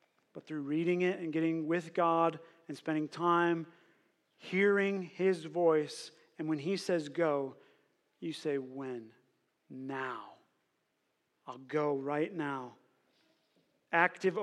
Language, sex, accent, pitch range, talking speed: English, male, American, 150-180 Hz, 115 wpm